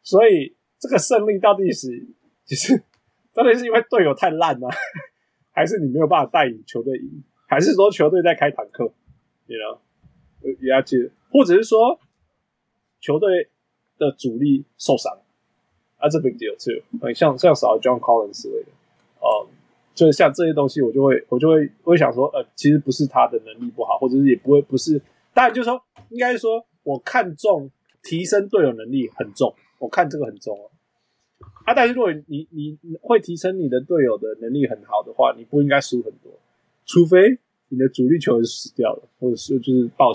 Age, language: 20-39, Chinese